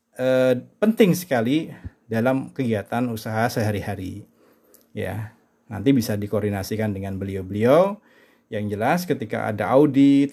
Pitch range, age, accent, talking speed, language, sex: 110-135 Hz, 30-49, native, 100 wpm, Indonesian, male